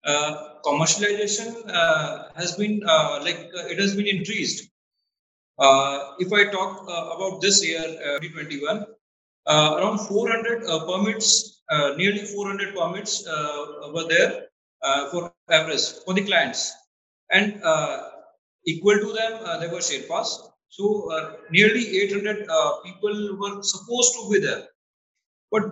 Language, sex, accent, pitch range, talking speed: English, male, Indian, 165-210 Hz, 145 wpm